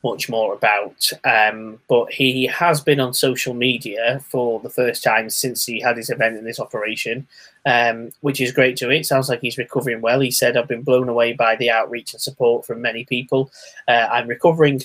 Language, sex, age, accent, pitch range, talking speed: English, male, 20-39, British, 120-150 Hz, 205 wpm